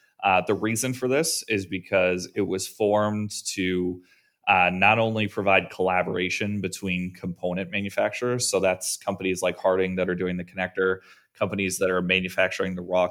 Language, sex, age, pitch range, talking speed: English, male, 20-39, 90-100 Hz, 160 wpm